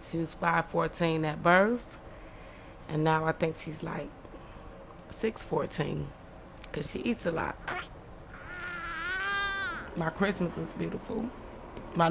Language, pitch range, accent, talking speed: English, 150-175 Hz, American, 110 wpm